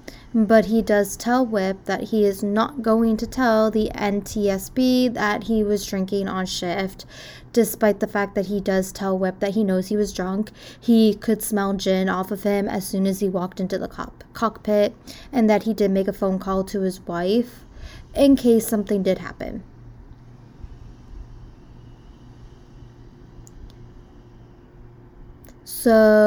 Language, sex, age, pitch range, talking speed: English, female, 20-39, 195-230 Hz, 155 wpm